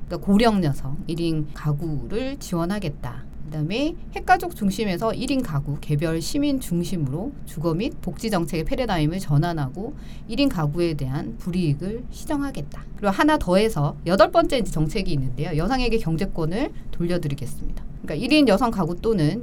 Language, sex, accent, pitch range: Korean, female, native, 150-225 Hz